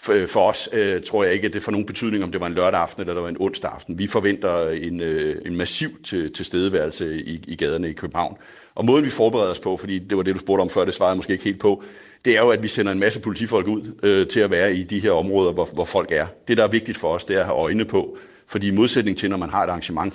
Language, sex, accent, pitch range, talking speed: Danish, male, native, 95-120 Hz, 290 wpm